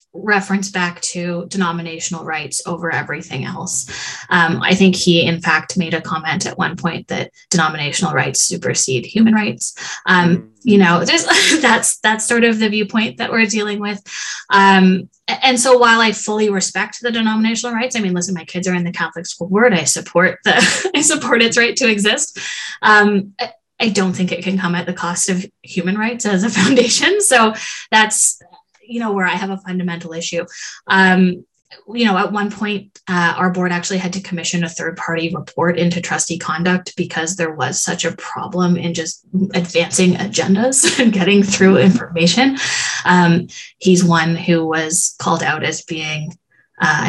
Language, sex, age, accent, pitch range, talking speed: English, female, 20-39, American, 170-215 Hz, 175 wpm